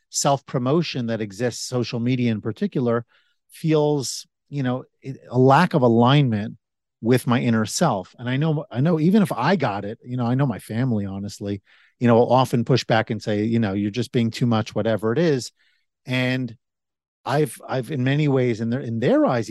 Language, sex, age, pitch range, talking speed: English, male, 40-59, 110-135 Hz, 195 wpm